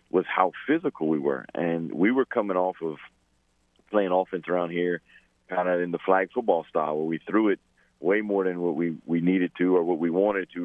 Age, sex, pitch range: 40-59, male, 85-100 Hz